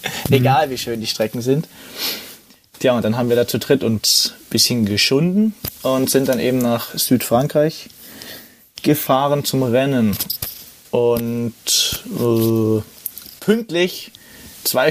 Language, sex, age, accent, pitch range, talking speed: German, male, 20-39, German, 120-150 Hz, 125 wpm